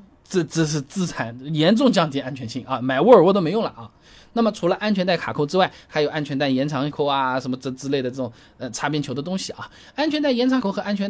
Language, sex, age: Chinese, male, 20-39